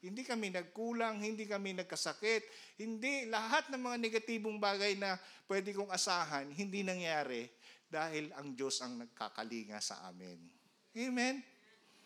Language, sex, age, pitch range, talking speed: Filipino, male, 50-69, 155-235 Hz, 130 wpm